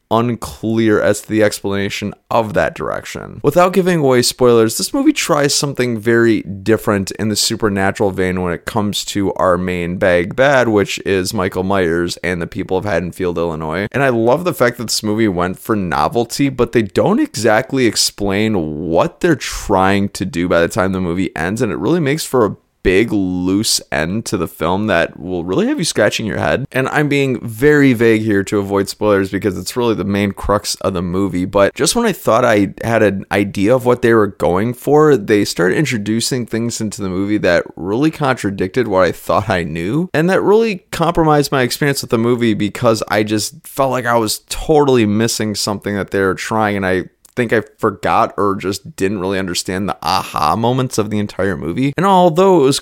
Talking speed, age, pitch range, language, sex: 205 wpm, 20-39, 100-130 Hz, English, male